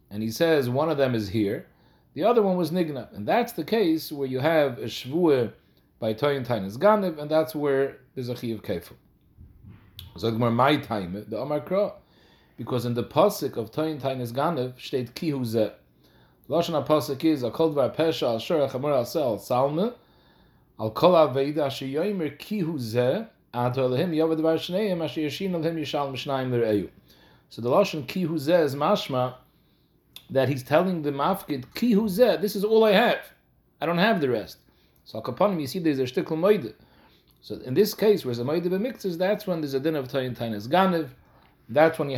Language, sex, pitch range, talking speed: English, male, 120-165 Hz, 180 wpm